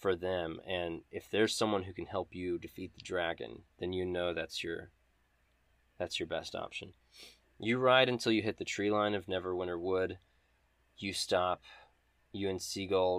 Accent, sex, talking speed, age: American, male, 175 wpm, 20-39